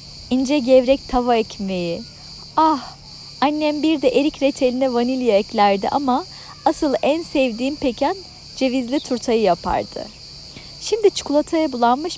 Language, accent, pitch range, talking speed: Turkish, native, 240-315 Hz, 115 wpm